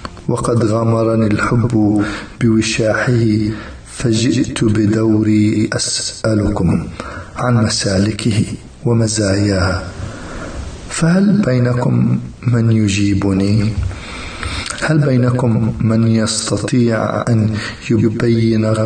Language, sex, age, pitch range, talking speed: English, male, 40-59, 95-115 Hz, 65 wpm